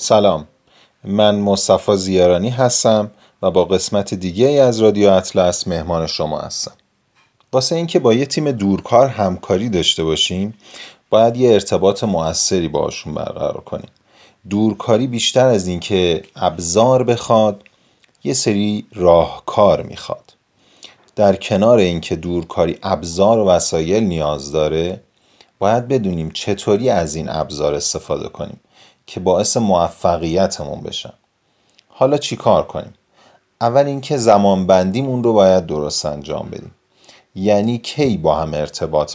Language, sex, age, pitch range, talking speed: Persian, male, 30-49, 90-115 Hz, 125 wpm